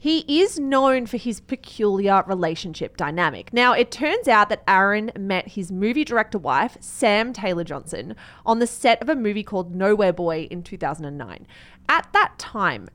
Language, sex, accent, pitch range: English, female, Australian, 190-255 Hz